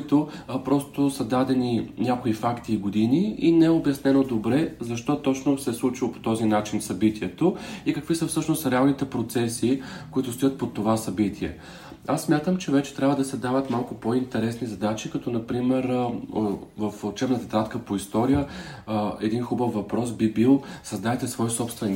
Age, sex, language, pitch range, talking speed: 40-59, male, Bulgarian, 115-140 Hz, 160 wpm